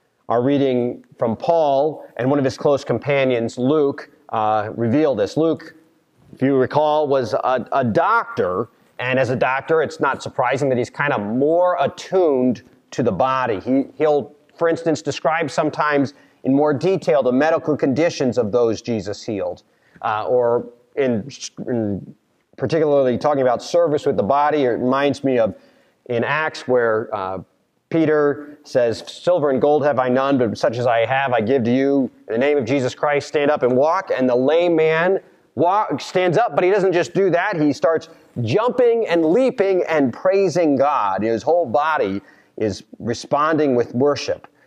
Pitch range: 125-170 Hz